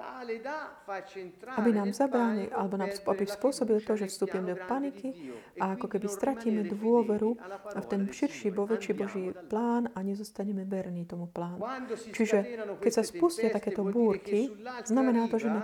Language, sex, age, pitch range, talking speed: Slovak, female, 30-49, 195-235 Hz, 150 wpm